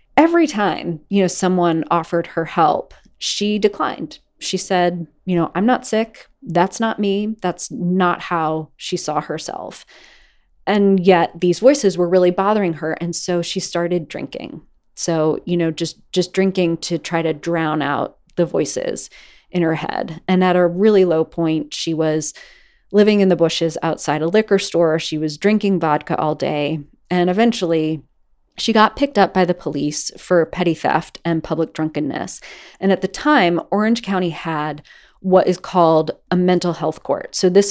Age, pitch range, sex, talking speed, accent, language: 30-49, 160-195 Hz, female, 170 wpm, American, English